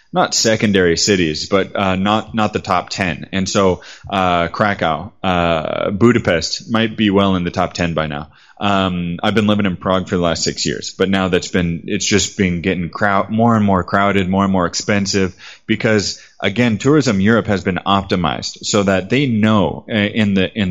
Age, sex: 20-39, male